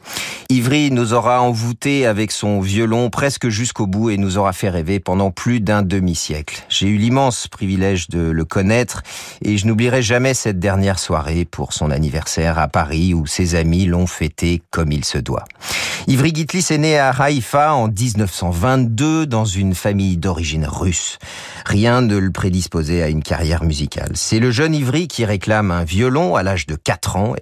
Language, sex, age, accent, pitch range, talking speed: French, male, 40-59, French, 85-120 Hz, 175 wpm